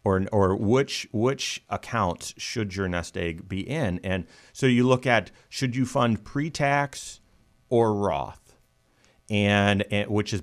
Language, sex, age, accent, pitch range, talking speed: English, male, 40-59, American, 100-135 Hz, 150 wpm